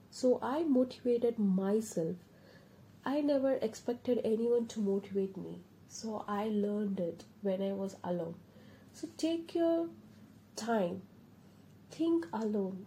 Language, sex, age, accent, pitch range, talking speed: English, female, 30-49, Indian, 190-245 Hz, 115 wpm